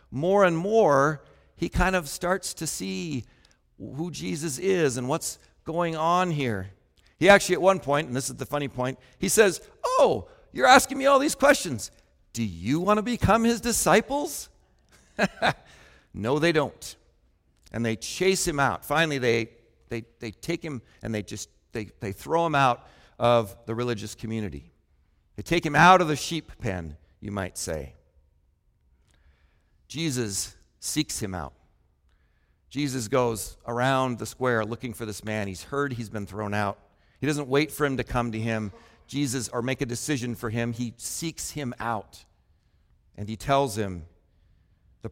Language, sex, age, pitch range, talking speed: English, male, 50-69, 95-145 Hz, 165 wpm